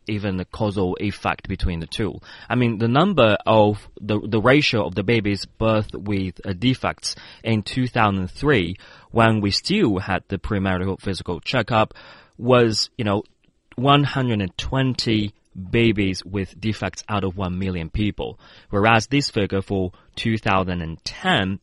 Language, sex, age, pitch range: Chinese, male, 30-49, 95-120 Hz